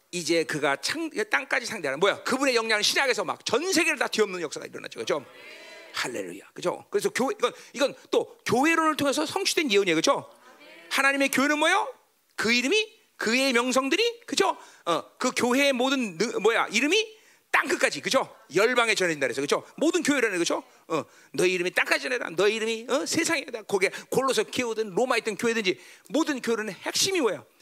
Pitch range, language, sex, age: 225-370 Hz, Korean, male, 40-59